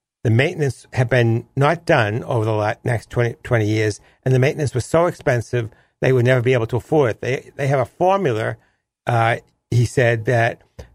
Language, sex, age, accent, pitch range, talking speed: English, male, 60-79, American, 115-140 Hz, 195 wpm